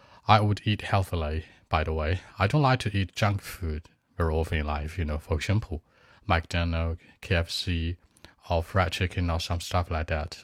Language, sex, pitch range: Chinese, male, 85-105 Hz